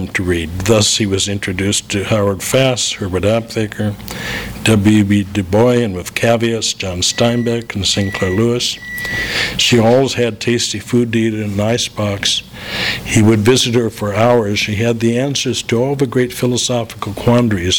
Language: English